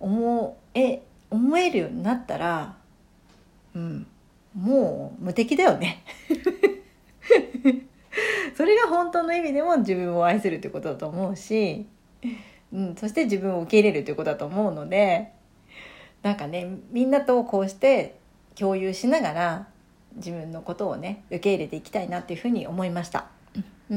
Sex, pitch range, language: female, 190-270 Hz, Japanese